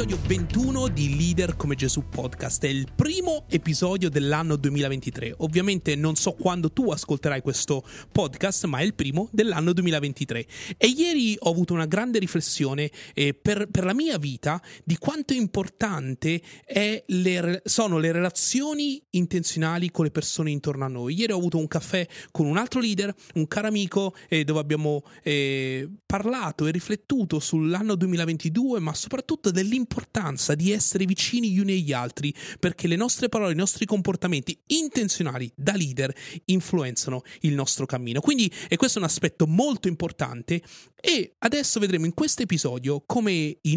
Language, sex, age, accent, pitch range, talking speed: Italian, male, 30-49, native, 145-200 Hz, 160 wpm